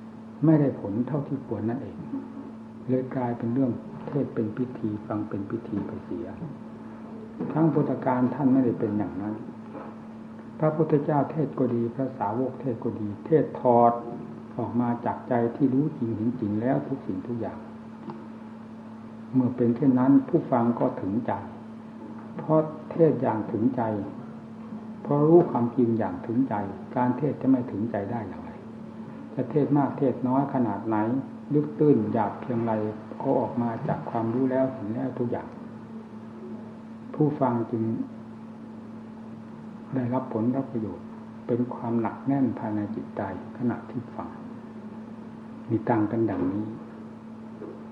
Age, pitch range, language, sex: 60-79, 110-140 Hz, Thai, male